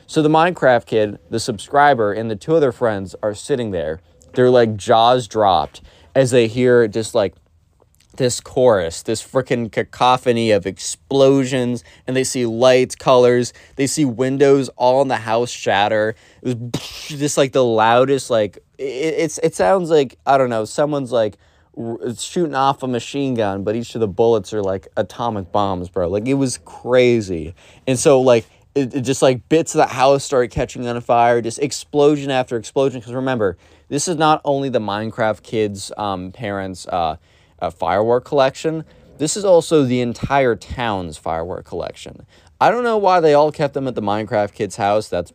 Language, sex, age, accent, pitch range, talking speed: English, male, 20-39, American, 100-135 Hz, 180 wpm